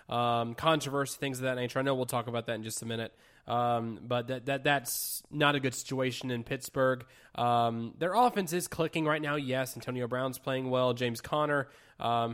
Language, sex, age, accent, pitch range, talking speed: English, male, 20-39, American, 125-150 Hz, 205 wpm